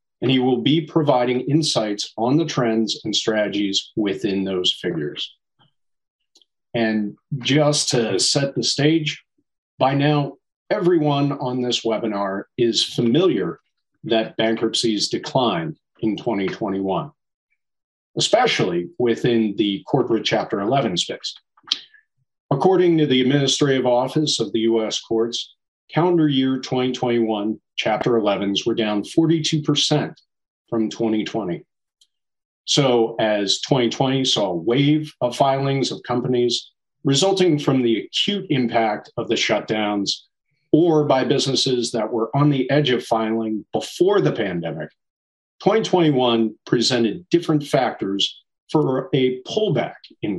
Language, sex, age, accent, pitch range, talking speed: English, male, 40-59, American, 115-150 Hz, 115 wpm